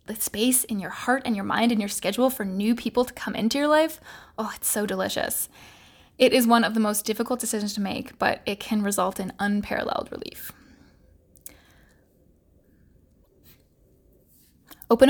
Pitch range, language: 210-260 Hz, English